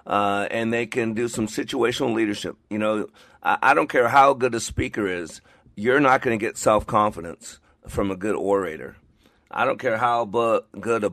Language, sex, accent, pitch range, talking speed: English, male, American, 105-135 Hz, 195 wpm